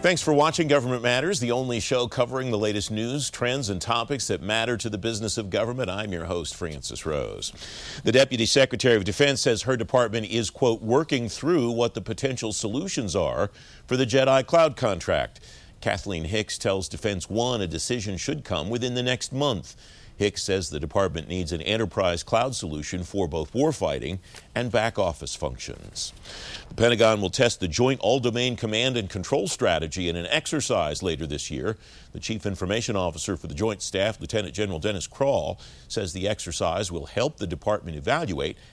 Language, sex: English, male